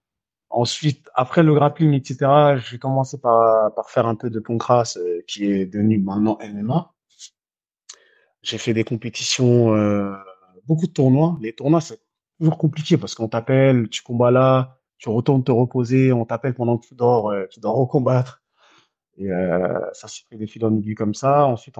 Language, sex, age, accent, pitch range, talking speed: French, male, 30-49, French, 105-135 Hz, 180 wpm